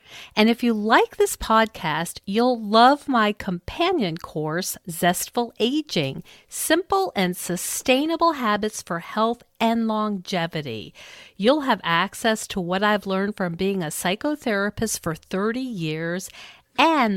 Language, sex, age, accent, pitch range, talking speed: English, female, 50-69, American, 165-220 Hz, 125 wpm